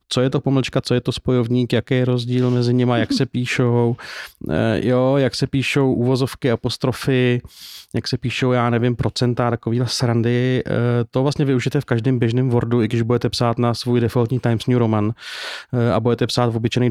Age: 30-49